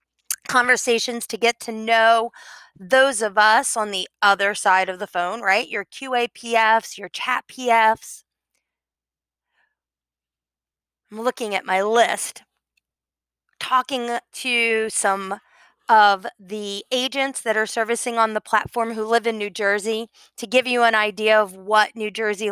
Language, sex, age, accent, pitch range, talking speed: English, female, 20-39, American, 195-245 Hz, 140 wpm